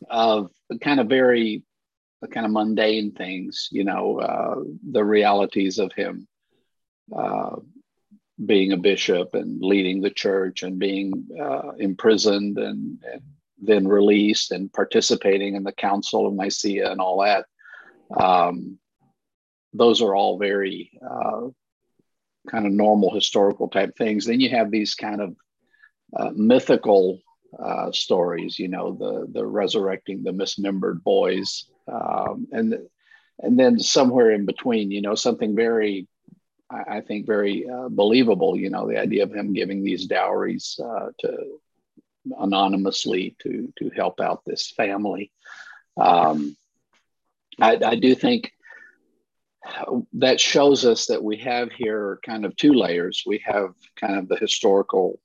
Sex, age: male, 50-69